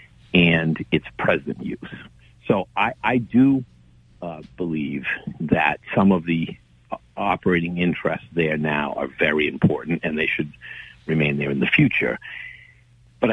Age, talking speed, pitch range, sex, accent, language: 50-69, 135 wpm, 85-120 Hz, male, American, English